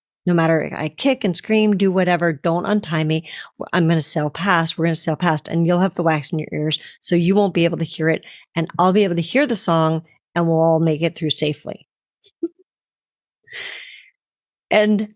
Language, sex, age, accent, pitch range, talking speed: English, female, 40-59, American, 160-210 Hz, 210 wpm